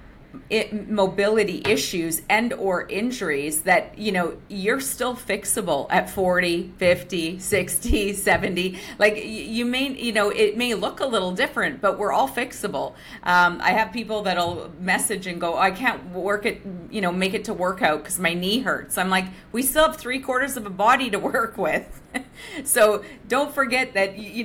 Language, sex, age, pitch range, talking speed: English, female, 40-59, 180-215 Hz, 175 wpm